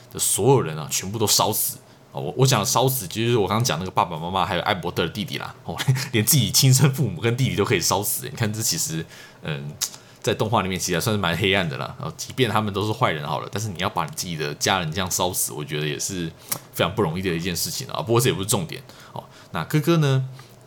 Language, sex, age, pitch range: Chinese, male, 20-39, 95-130 Hz